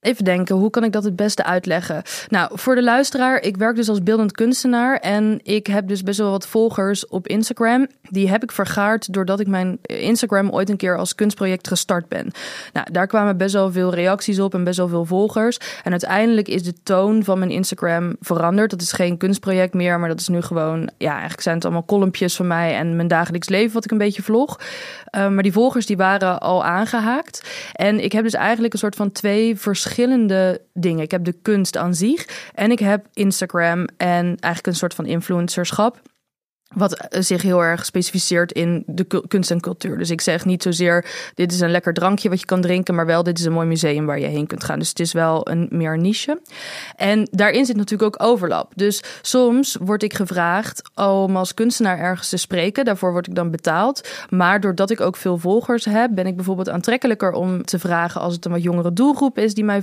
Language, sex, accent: Dutch, female, Dutch